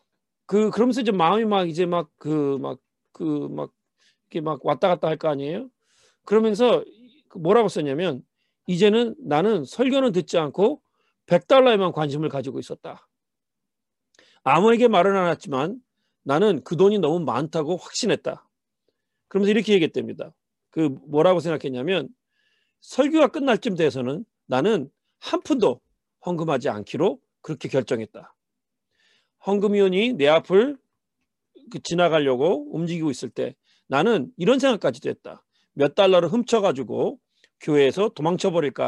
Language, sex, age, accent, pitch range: Korean, male, 40-59, native, 155-230 Hz